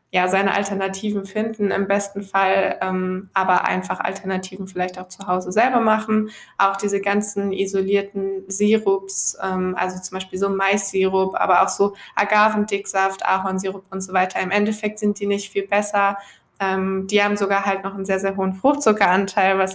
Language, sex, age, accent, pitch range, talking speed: German, female, 20-39, German, 190-210 Hz, 165 wpm